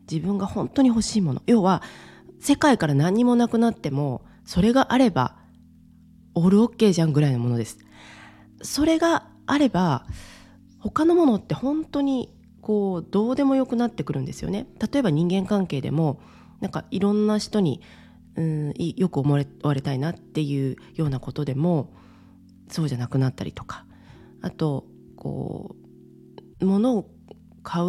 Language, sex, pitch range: Japanese, female, 130-215 Hz